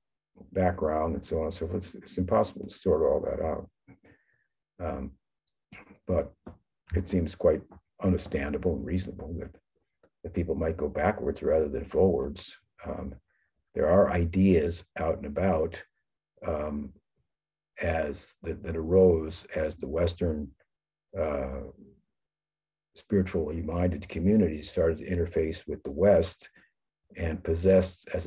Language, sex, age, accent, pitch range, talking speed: English, male, 50-69, American, 80-95 Hz, 125 wpm